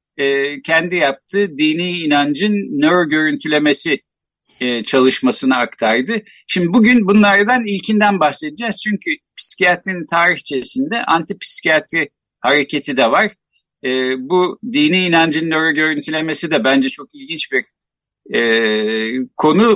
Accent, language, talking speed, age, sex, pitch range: native, Turkish, 95 wpm, 50-69, male, 135-205 Hz